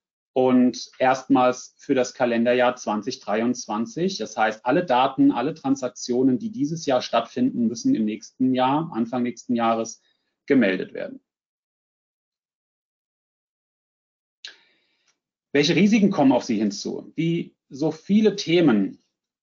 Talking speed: 110 wpm